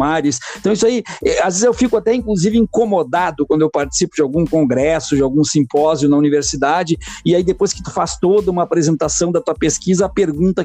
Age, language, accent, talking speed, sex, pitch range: 50-69, Portuguese, Brazilian, 195 wpm, male, 155-205 Hz